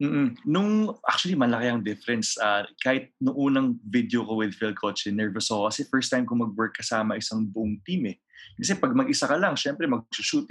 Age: 20-39